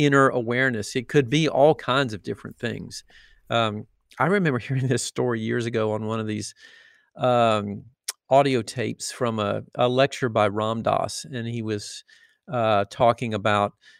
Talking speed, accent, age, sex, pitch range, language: 165 wpm, American, 50-69, male, 110-130 Hz, English